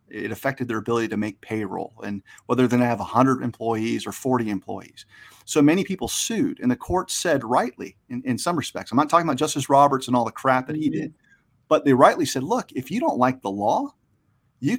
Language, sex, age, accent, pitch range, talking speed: English, male, 40-59, American, 120-170 Hz, 225 wpm